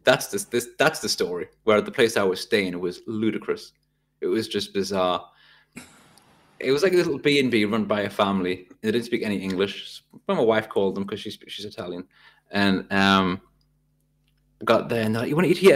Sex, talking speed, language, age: male, 215 wpm, English, 20-39